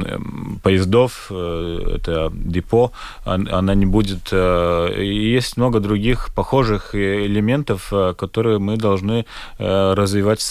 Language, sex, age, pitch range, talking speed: Russian, male, 30-49, 95-110 Hz, 85 wpm